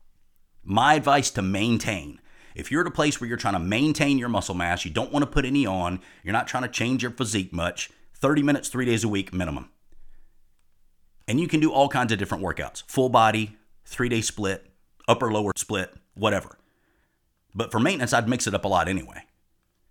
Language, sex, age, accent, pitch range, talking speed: English, male, 30-49, American, 95-130 Hz, 195 wpm